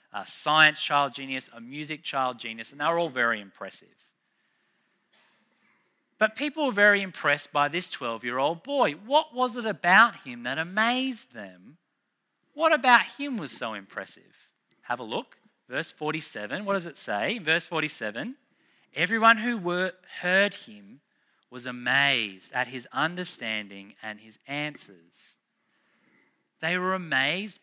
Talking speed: 135 wpm